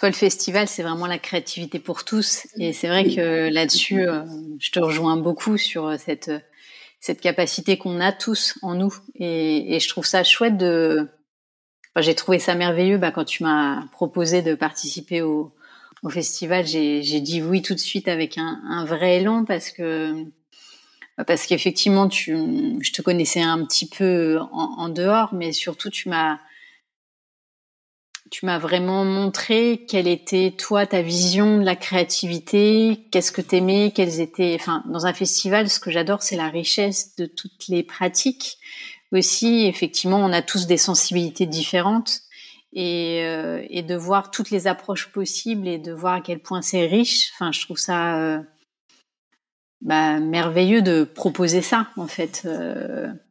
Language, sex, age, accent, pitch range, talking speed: French, female, 30-49, French, 165-195 Hz, 165 wpm